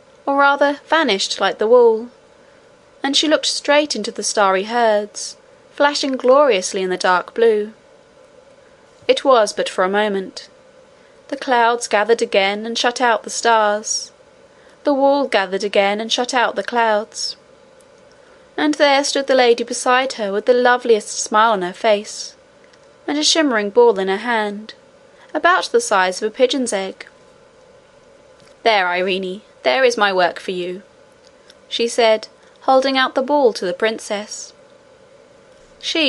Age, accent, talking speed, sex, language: 20-39, British, 150 wpm, female, English